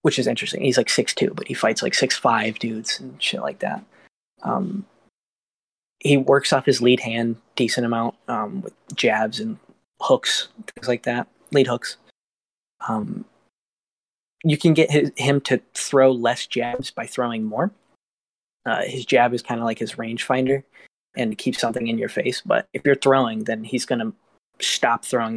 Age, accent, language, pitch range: 20-39, American, English, 115-140 Hz